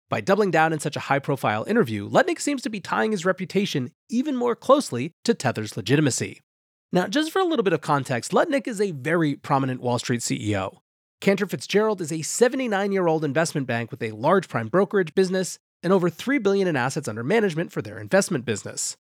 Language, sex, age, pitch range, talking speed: English, male, 30-49, 140-200 Hz, 195 wpm